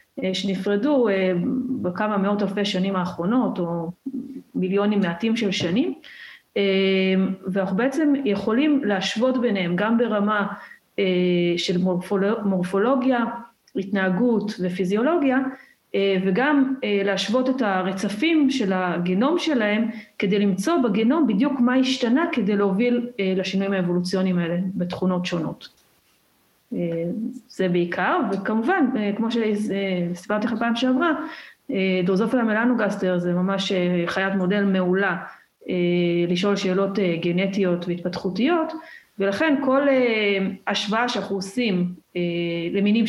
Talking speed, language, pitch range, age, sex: 95 wpm, Hebrew, 185-240 Hz, 40-59, female